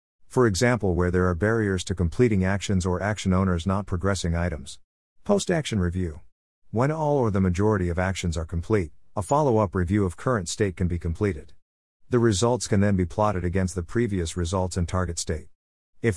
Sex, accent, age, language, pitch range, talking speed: male, American, 50-69, English, 85-115 Hz, 190 wpm